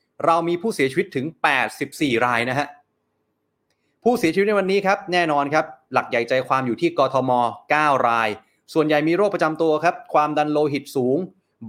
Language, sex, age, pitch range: Thai, male, 30-49, 135-180 Hz